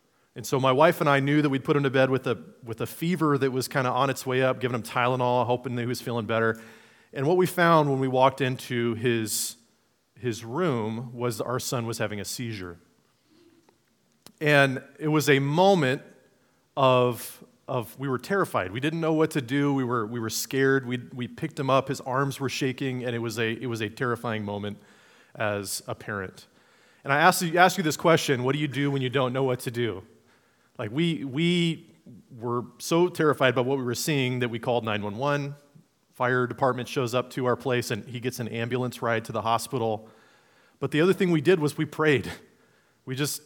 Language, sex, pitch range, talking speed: English, male, 115-140 Hz, 215 wpm